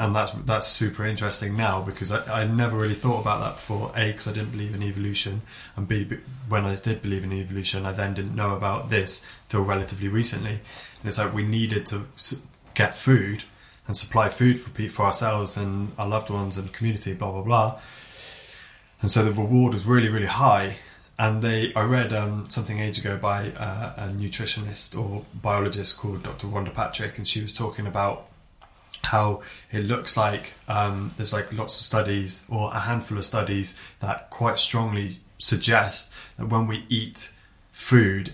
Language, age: English, 20-39